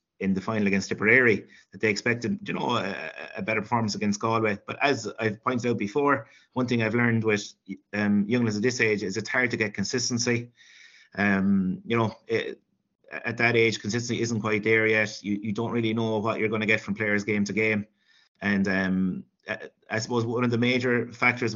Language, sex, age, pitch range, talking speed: English, male, 30-49, 105-115 Hz, 215 wpm